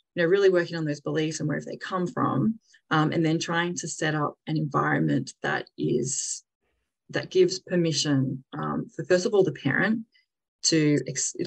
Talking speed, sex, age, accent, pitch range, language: 185 wpm, female, 20-39, Australian, 150-175 Hz, English